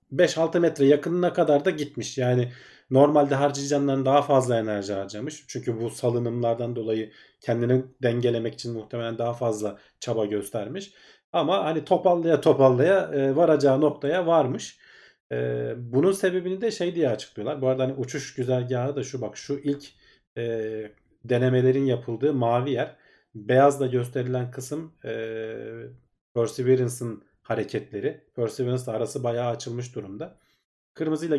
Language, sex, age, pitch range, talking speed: Turkish, male, 40-59, 115-140 Hz, 130 wpm